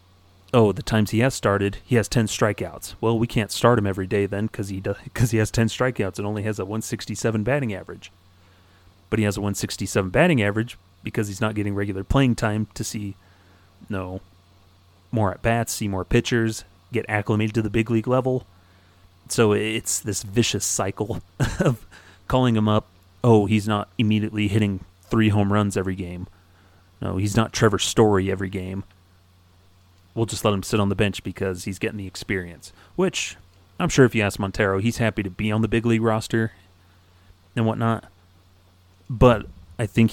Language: English